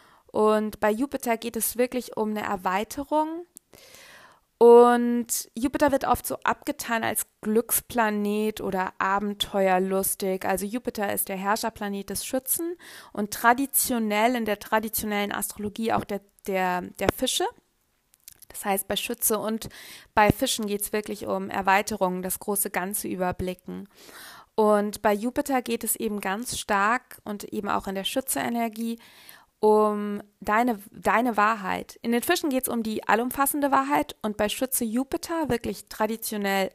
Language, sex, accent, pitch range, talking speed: German, female, German, 200-240 Hz, 140 wpm